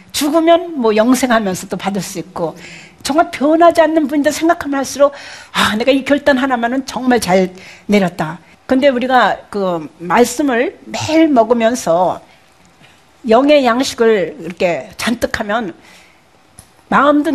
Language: Korean